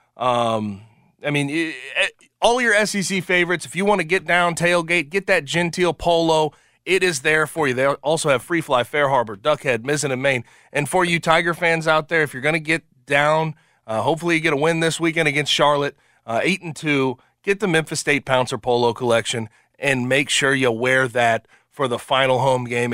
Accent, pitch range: American, 125-165 Hz